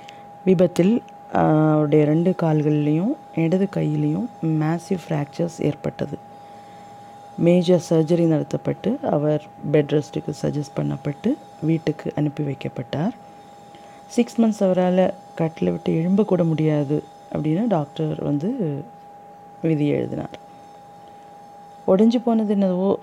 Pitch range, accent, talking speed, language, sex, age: 160-205 Hz, native, 90 wpm, Tamil, female, 30-49